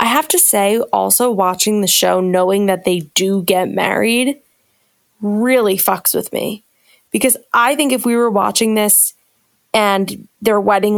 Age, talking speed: 20-39, 160 wpm